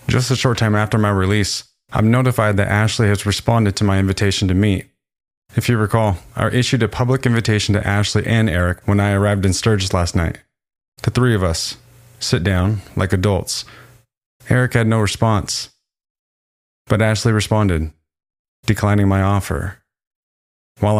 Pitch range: 95-115 Hz